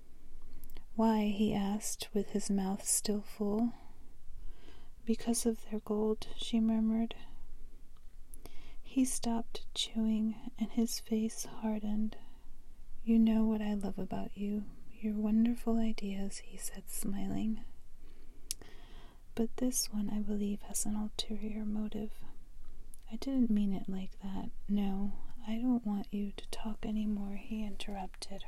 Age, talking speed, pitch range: 30-49, 125 wpm, 200-225 Hz